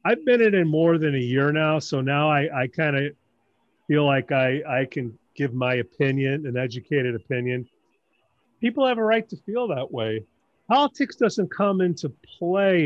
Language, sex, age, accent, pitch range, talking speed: English, male, 40-59, American, 135-180 Hz, 175 wpm